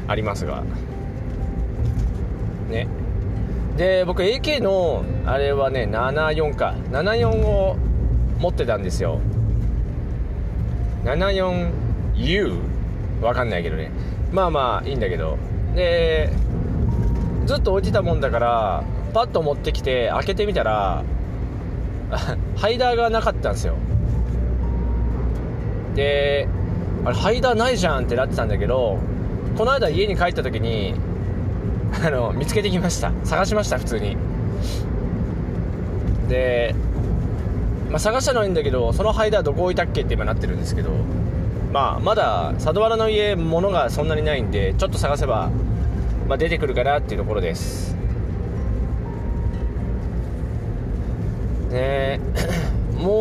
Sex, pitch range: male, 95-140 Hz